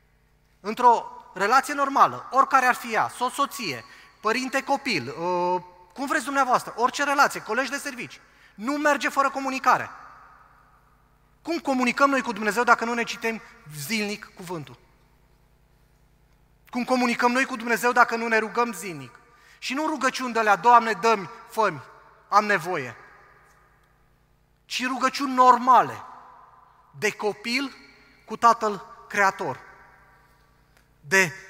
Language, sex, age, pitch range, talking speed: Romanian, male, 30-49, 160-235 Hz, 120 wpm